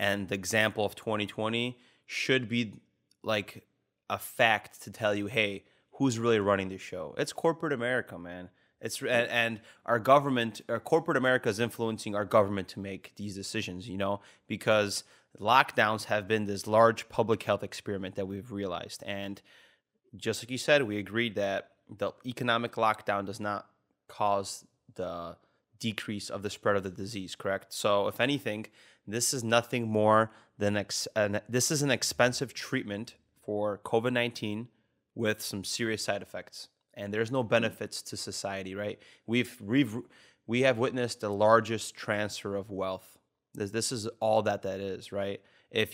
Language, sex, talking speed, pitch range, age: English, male, 160 wpm, 100-120 Hz, 20-39